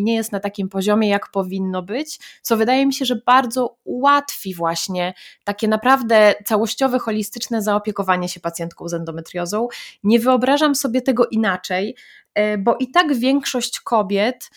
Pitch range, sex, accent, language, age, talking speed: 185-235 Hz, female, native, Polish, 20-39, 145 wpm